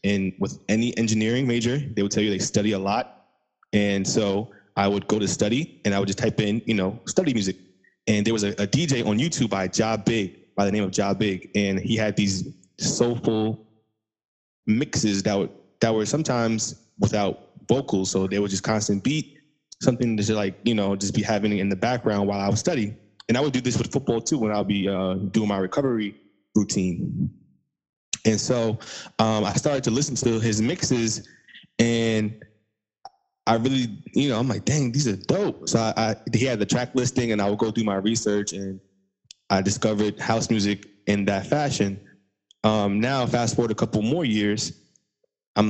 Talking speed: 200 wpm